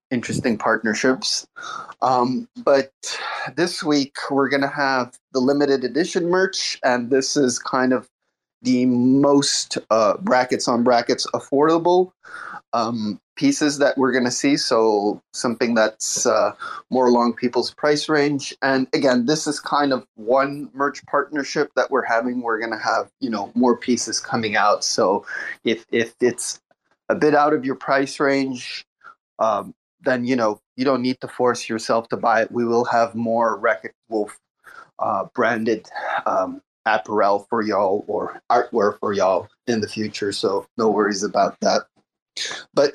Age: 30-49